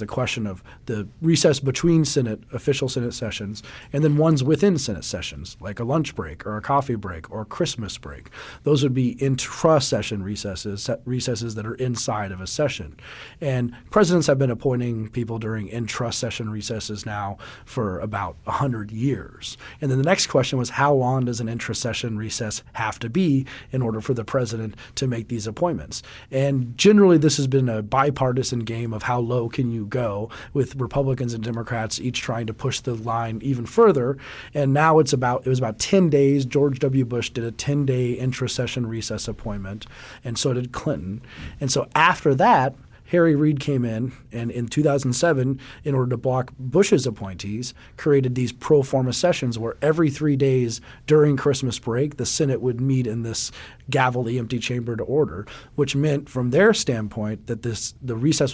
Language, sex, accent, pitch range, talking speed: English, male, American, 115-140 Hz, 180 wpm